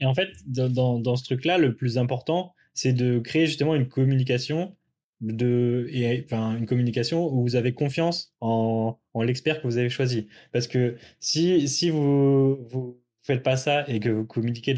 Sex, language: male, French